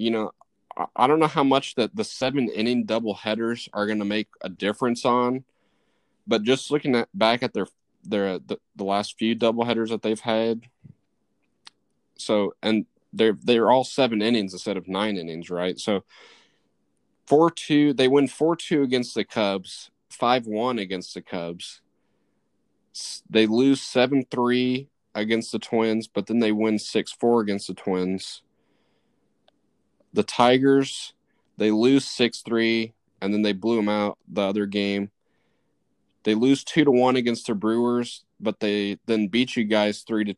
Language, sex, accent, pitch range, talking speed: English, male, American, 105-125 Hz, 160 wpm